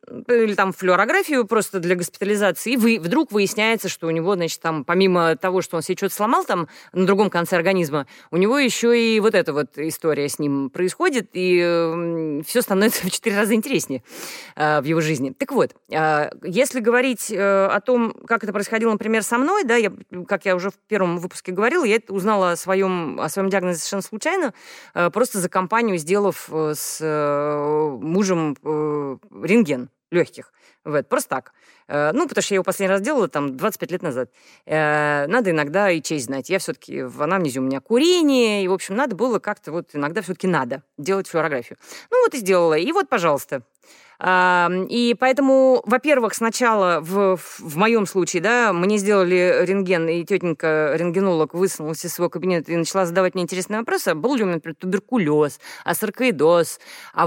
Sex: female